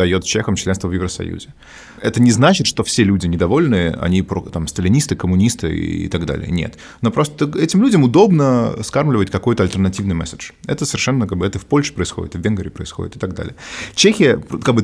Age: 20-39